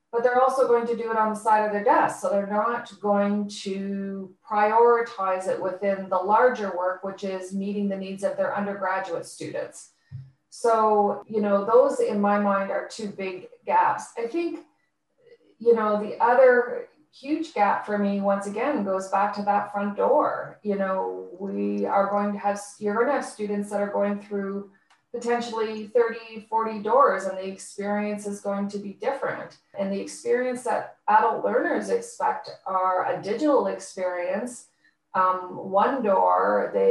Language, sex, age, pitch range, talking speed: English, female, 30-49, 195-235 Hz, 170 wpm